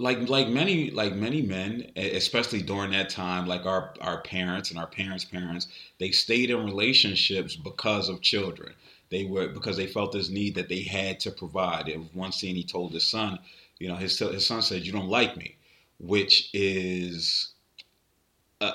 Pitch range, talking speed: 95-115 Hz, 180 wpm